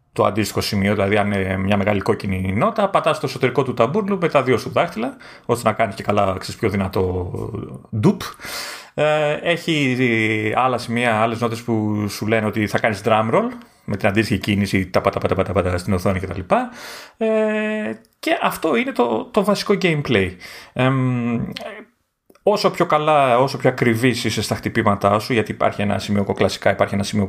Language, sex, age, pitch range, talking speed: Greek, male, 30-49, 100-145 Hz, 170 wpm